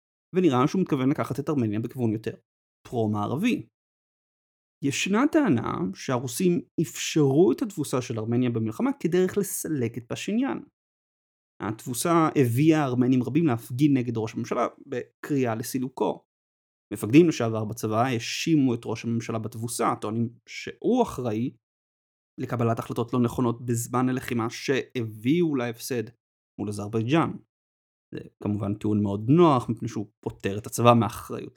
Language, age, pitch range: Hebrew, 30-49, 115-150 Hz